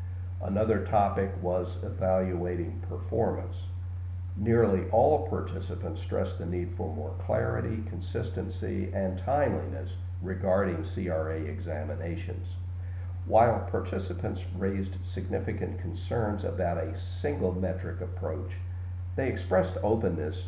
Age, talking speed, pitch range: 50-69, 95 wpm, 90-95 Hz